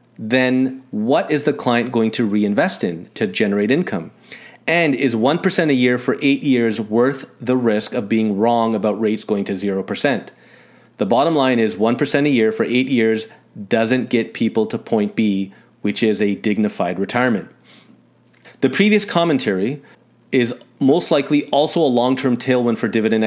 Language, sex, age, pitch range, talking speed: English, male, 30-49, 110-135 Hz, 165 wpm